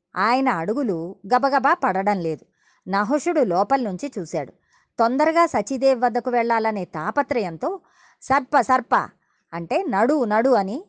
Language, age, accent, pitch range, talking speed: Telugu, 20-39, native, 185-280 Hz, 110 wpm